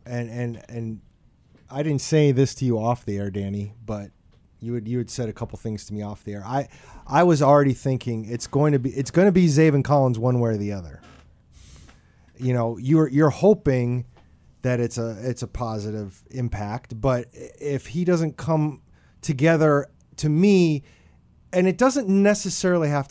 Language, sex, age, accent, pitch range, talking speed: English, male, 30-49, American, 110-150 Hz, 185 wpm